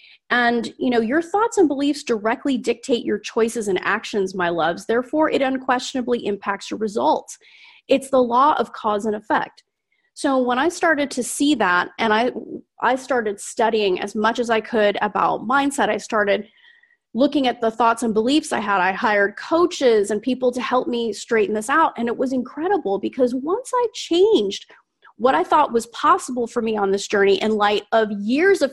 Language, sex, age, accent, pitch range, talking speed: English, female, 30-49, American, 220-290 Hz, 190 wpm